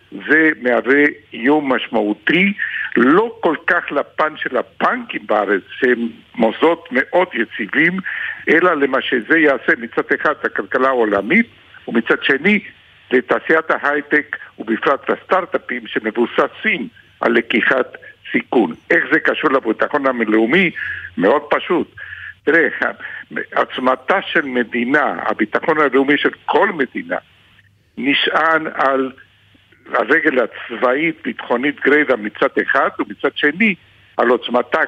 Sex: male